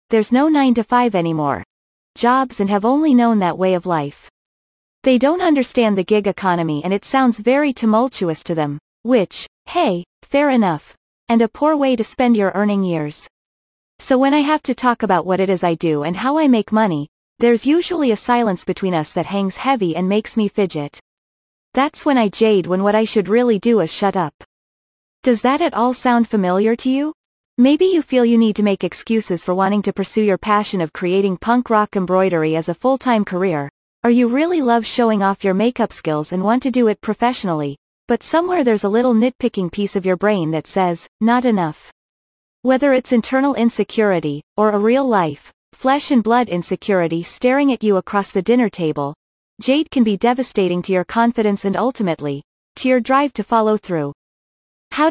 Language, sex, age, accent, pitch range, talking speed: English, female, 30-49, American, 185-250 Hz, 190 wpm